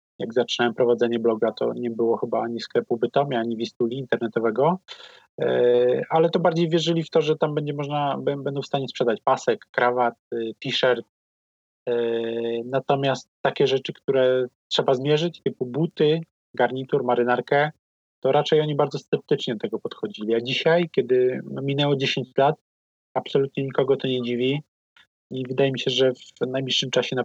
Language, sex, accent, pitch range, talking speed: Polish, male, native, 120-140 Hz, 160 wpm